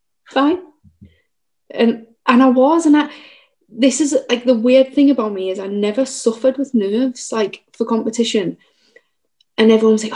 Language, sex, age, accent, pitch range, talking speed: English, female, 30-49, British, 200-260 Hz, 160 wpm